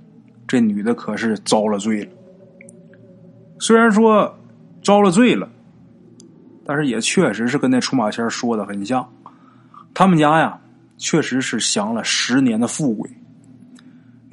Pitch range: 145-235 Hz